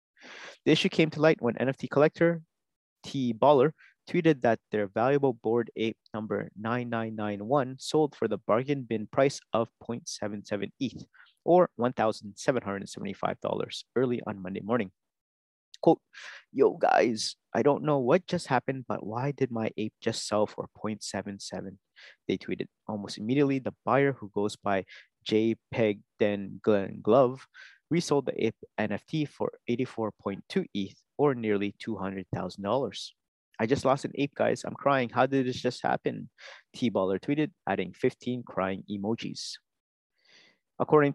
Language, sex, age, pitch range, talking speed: English, male, 30-49, 105-140 Hz, 140 wpm